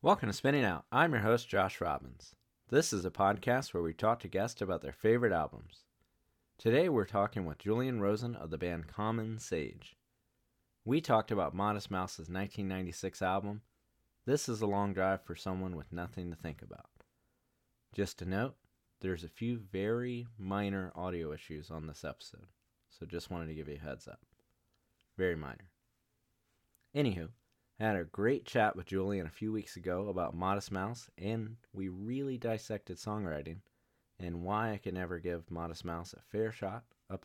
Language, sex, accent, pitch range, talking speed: English, male, American, 90-115 Hz, 175 wpm